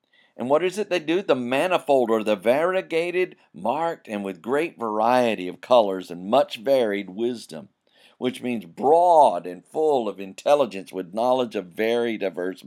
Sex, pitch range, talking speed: male, 95-140 Hz, 160 wpm